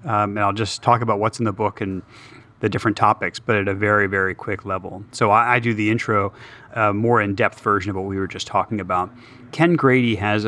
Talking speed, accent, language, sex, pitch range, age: 235 wpm, American, English, male, 100-120 Hz, 30-49